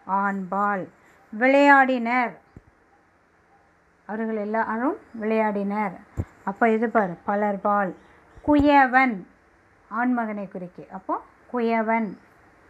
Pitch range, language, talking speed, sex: 205-260 Hz, Tamil, 60 wpm, female